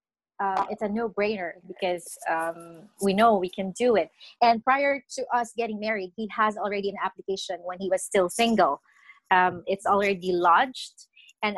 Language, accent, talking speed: English, Filipino, 175 wpm